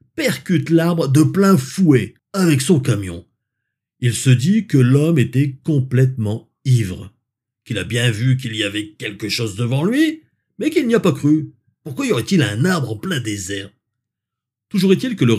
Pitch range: 110-145 Hz